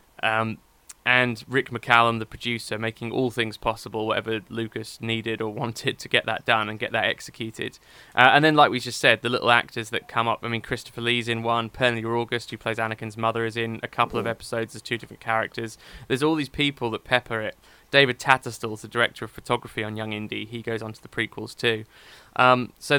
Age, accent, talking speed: 20-39, British, 215 wpm